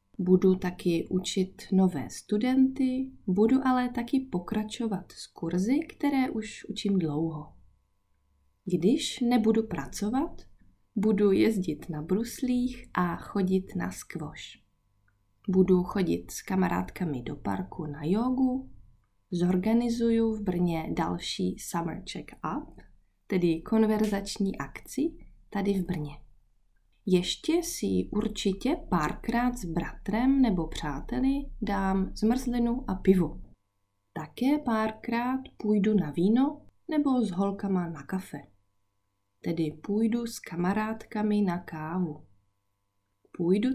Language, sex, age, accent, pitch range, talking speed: Czech, female, 20-39, native, 165-230 Hz, 105 wpm